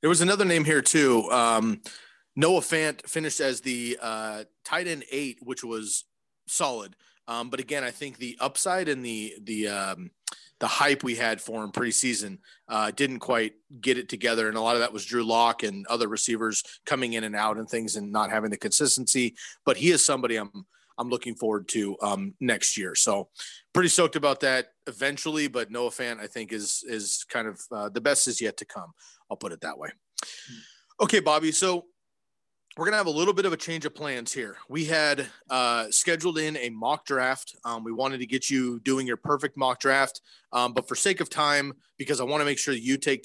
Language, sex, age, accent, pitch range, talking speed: English, male, 30-49, American, 115-150 Hz, 215 wpm